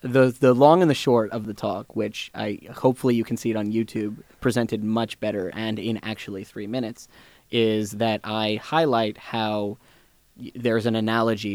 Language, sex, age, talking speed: English, male, 20-39, 180 wpm